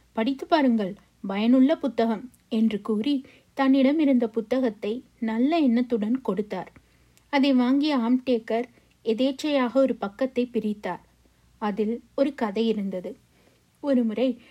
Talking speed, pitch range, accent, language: 105 wpm, 215-260 Hz, native, Tamil